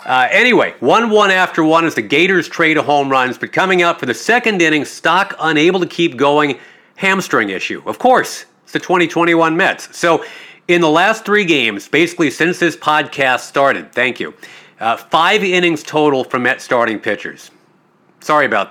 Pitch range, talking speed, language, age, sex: 135-180 Hz, 185 wpm, English, 40-59, male